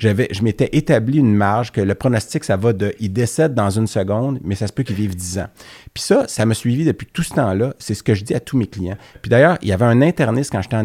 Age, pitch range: 30-49, 100-125 Hz